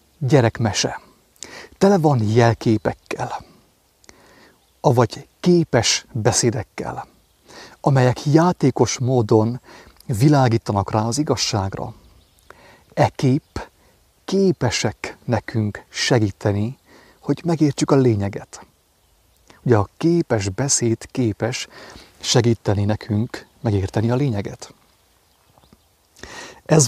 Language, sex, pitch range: English, male, 105-130 Hz